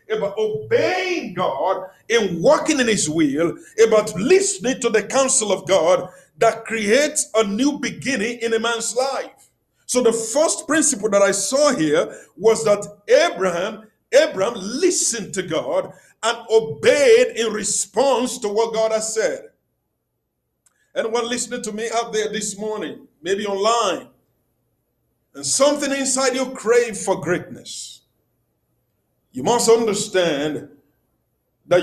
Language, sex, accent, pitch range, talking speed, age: English, male, Nigerian, 185-250 Hz, 130 wpm, 50-69